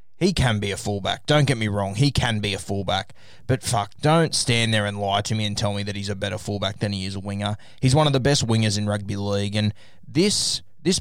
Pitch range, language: 105-125 Hz, English